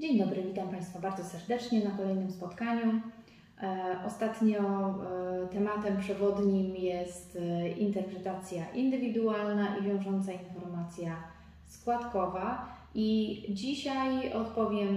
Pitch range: 180-210 Hz